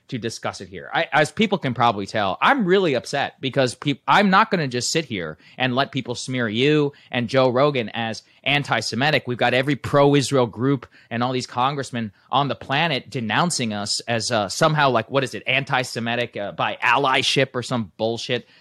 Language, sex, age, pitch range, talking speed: English, male, 20-39, 120-160 Hz, 180 wpm